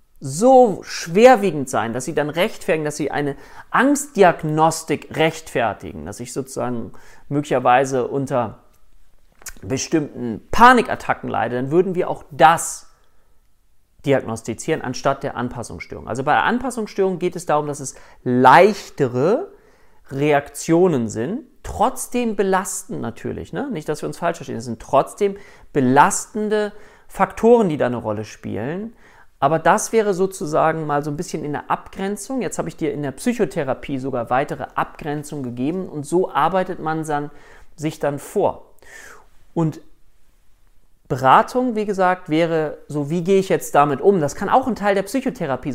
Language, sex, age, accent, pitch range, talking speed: German, male, 40-59, German, 140-200 Hz, 140 wpm